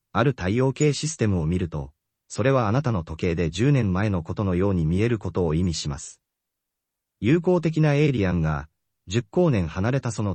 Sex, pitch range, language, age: male, 85-130 Hz, Japanese, 30-49